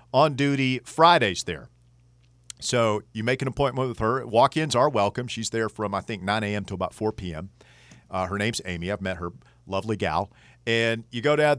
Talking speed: 190 wpm